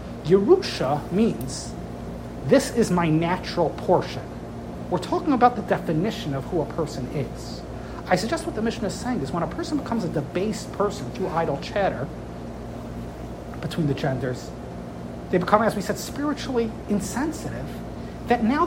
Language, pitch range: English, 165-250 Hz